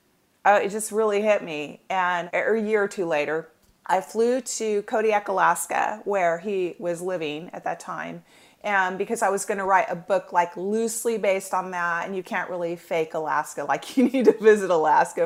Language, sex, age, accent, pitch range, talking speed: English, female, 40-59, American, 175-220 Hz, 190 wpm